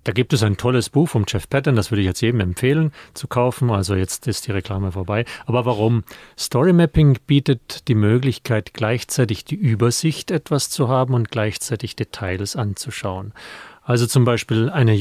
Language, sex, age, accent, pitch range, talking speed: German, male, 40-59, German, 110-135 Hz, 175 wpm